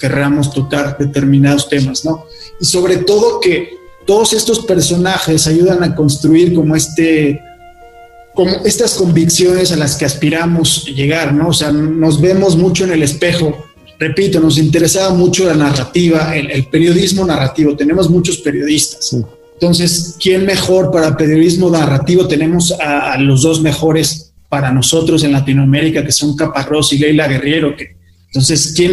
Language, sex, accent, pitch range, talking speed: Spanish, male, Mexican, 145-180 Hz, 150 wpm